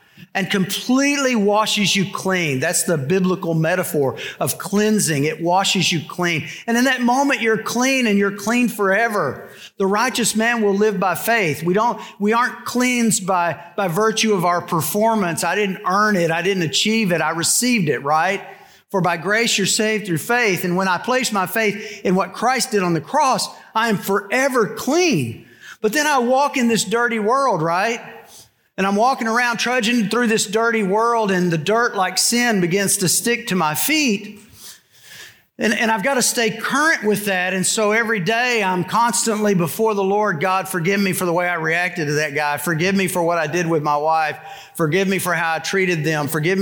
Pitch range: 180-225 Hz